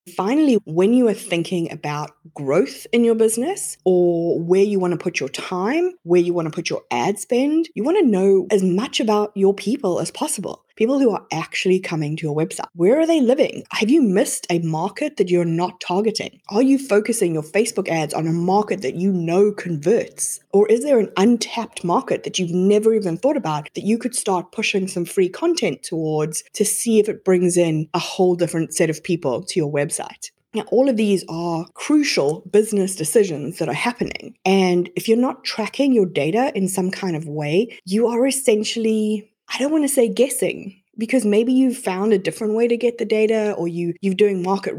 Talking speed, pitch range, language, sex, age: 210 wpm, 175-230 Hz, English, female, 20-39